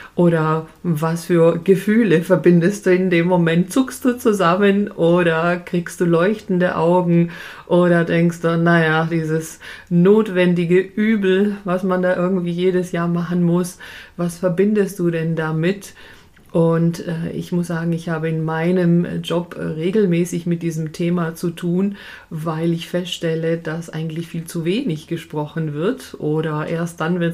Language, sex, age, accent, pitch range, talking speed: German, female, 40-59, German, 165-190 Hz, 145 wpm